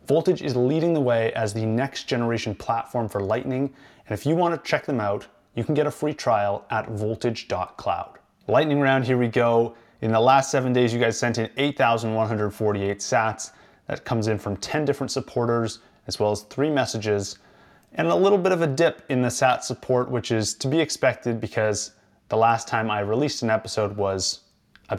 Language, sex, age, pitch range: English, male, 30-49, 105-130 Hz